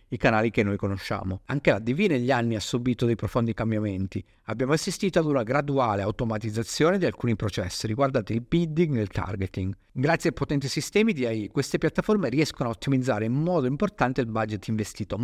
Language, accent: Italian, native